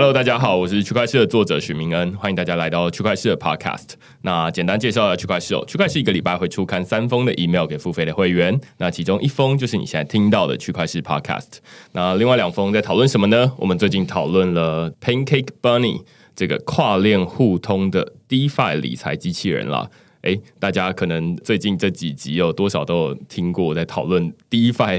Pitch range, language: 80-100 Hz, Chinese